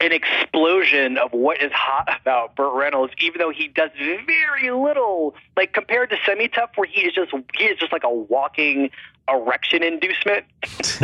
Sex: male